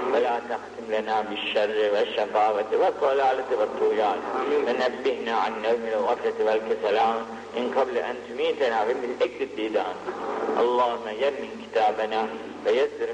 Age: 50-69